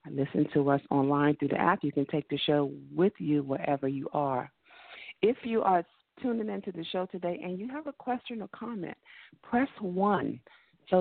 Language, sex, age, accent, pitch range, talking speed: English, female, 50-69, American, 150-185 Hz, 190 wpm